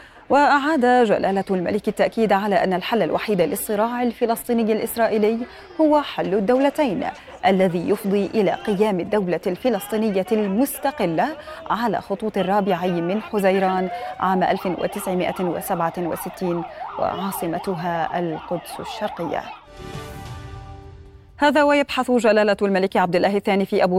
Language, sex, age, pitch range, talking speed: Arabic, female, 20-39, 185-230 Hz, 100 wpm